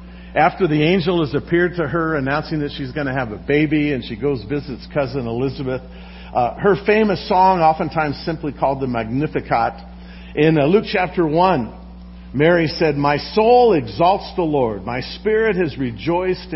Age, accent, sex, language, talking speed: 50-69, American, male, English, 165 wpm